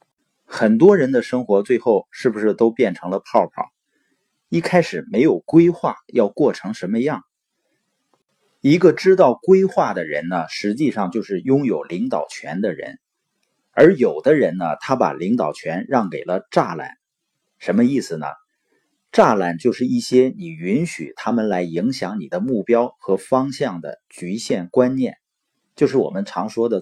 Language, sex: Chinese, male